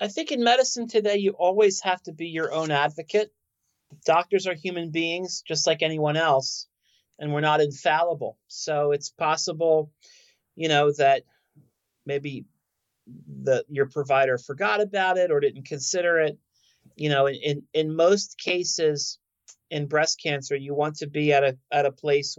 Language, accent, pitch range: English, American, 140-170 Hz